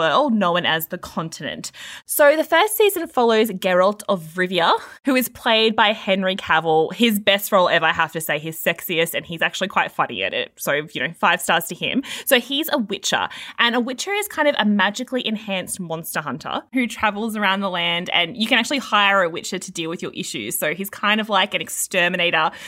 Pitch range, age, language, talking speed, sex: 170-225 Hz, 20-39, English, 215 wpm, female